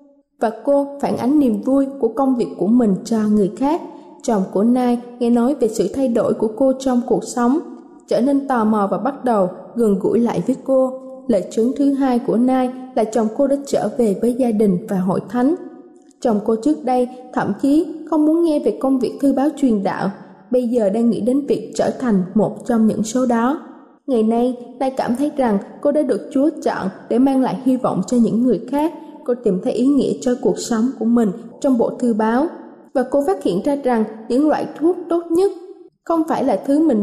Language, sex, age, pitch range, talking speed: Vietnamese, female, 20-39, 225-285 Hz, 220 wpm